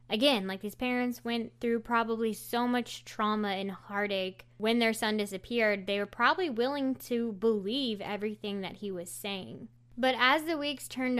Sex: female